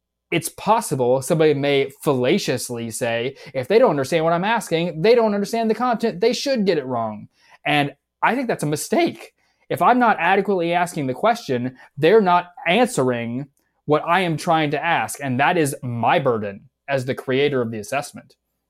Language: English